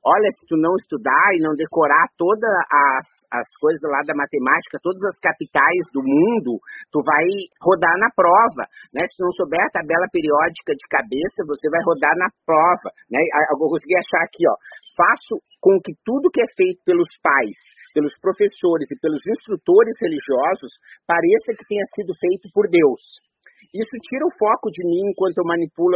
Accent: Brazilian